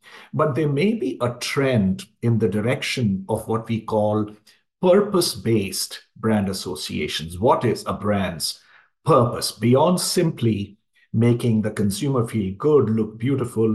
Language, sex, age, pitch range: English, male, 50-69, 100-120 Hz